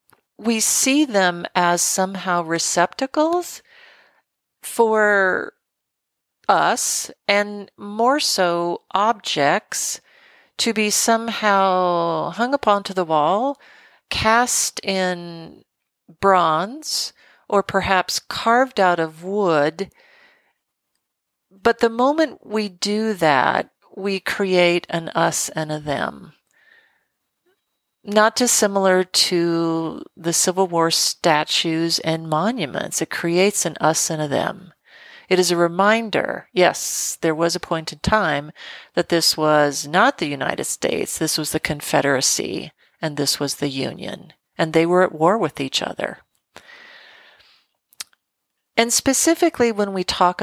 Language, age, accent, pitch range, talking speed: English, 50-69, American, 165-230 Hz, 115 wpm